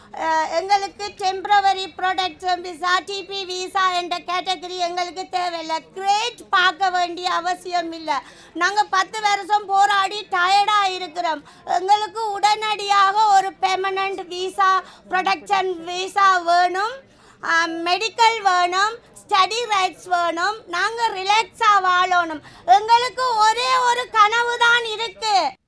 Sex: female